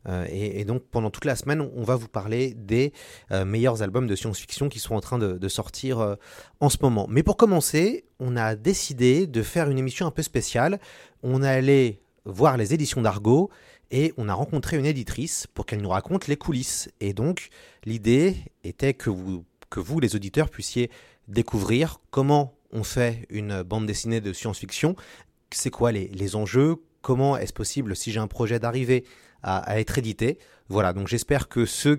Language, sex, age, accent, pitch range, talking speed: French, male, 30-49, French, 105-135 Hz, 190 wpm